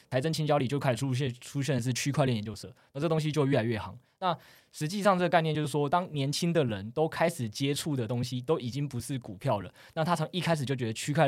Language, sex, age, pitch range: Chinese, male, 20-39, 120-155 Hz